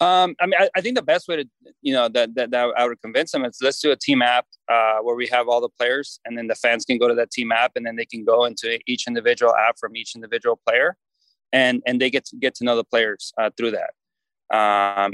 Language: English